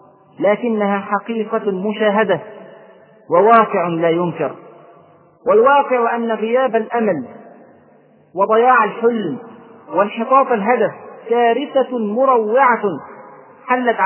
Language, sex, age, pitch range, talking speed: Arabic, male, 40-59, 200-250 Hz, 75 wpm